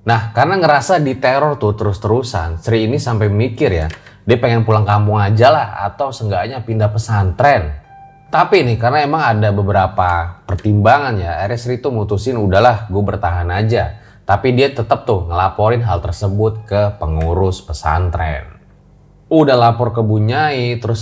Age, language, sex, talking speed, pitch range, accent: 20-39, Indonesian, male, 150 wpm, 100-120 Hz, native